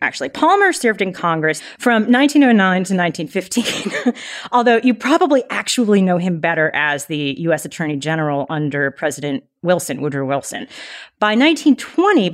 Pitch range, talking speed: 165-245 Hz, 135 wpm